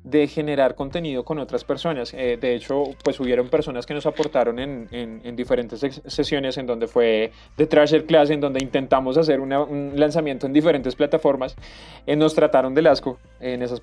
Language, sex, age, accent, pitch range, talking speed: Spanish, male, 20-39, Colombian, 135-160 Hz, 190 wpm